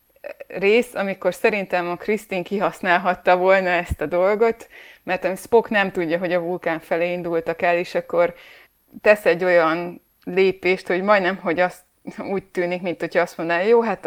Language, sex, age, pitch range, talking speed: Hungarian, female, 20-39, 170-195 Hz, 165 wpm